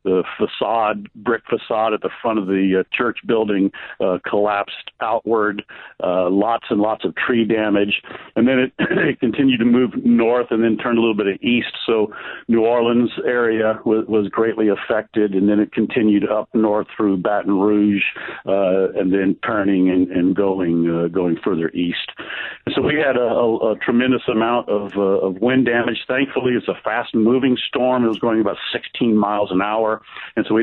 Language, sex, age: English, male, 60-79